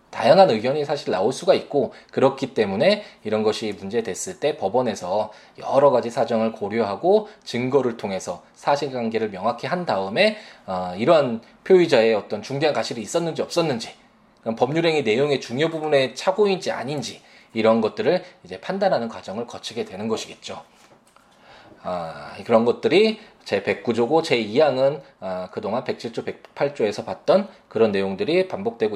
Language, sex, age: Korean, male, 20-39